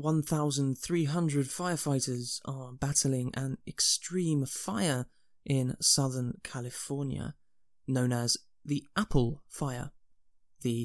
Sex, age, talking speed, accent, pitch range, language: male, 20-39, 90 wpm, British, 130-165 Hz, English